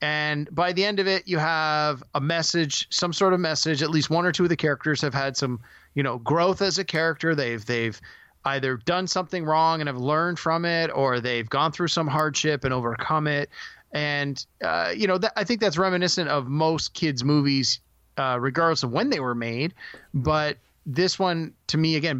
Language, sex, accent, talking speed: English, male, American, 205 wpm